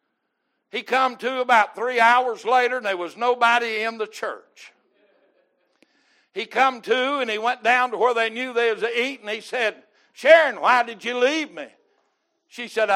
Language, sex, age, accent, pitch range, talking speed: English, male, 60-79, American, 230-305 Hz, 175 wpm